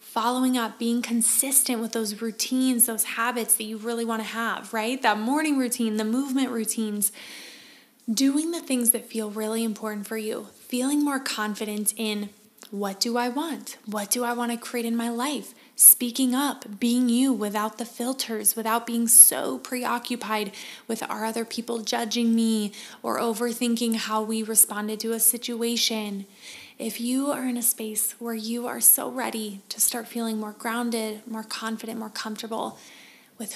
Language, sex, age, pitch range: English, female, 20-39, 220-240 Hz